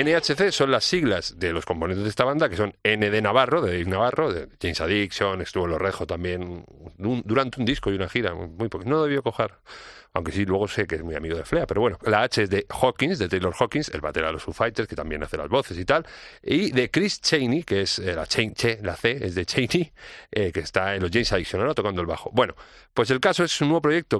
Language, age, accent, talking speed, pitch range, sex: Spanish, 40-59, Spanish, 260 wpm, 95-130 Hz, male